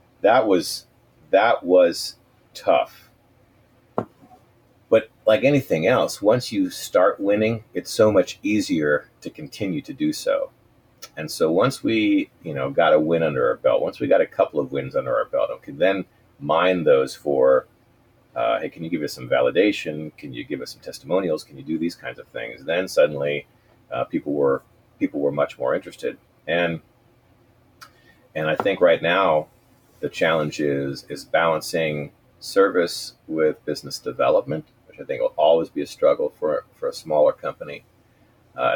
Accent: American